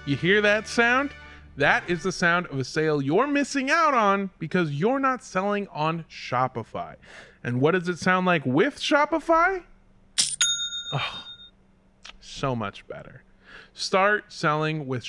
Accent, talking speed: American, 140 wpm